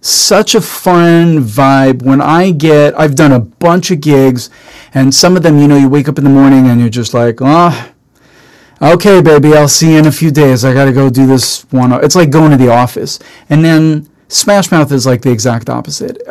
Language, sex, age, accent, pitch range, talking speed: English, male, 40-59, American, 130-155 Hz, 225 wpm